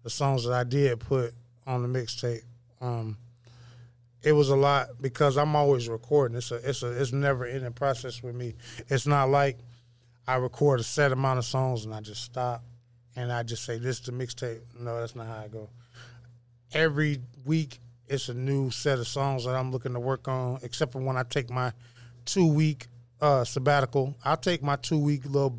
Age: 20-39